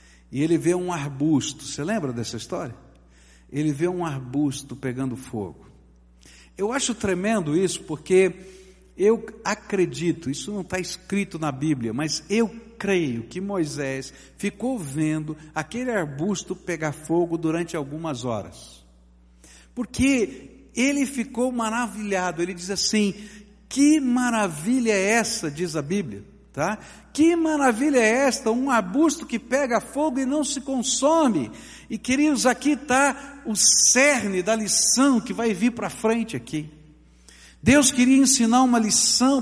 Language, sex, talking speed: Portuguese, male, 135 wpm